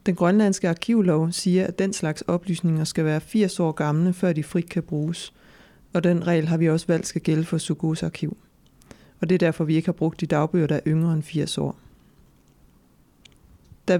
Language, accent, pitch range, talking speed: Danish, native, 155-180 Hz, 200 wpm